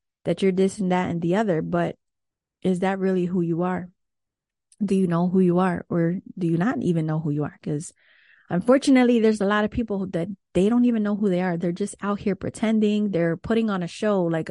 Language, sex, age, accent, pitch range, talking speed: English, female, 30-49, American, 170-200 Hz, 230 wpm